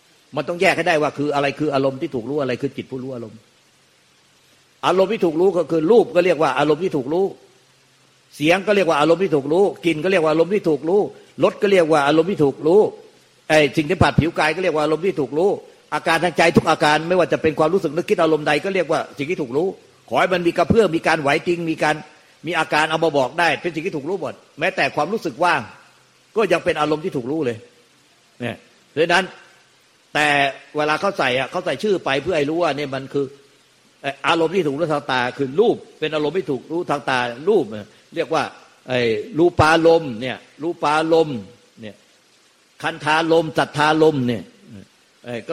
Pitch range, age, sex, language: 140-170 Hz, 50-69, male, Thai